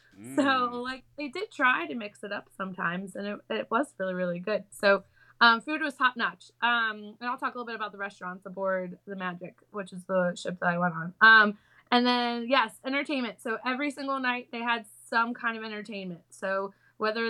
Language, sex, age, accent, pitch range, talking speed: English, female, 20-39, American, 200-245 Hz, 210 wpm